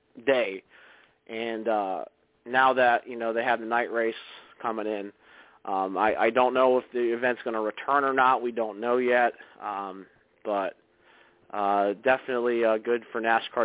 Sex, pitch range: male, 110-125 Hz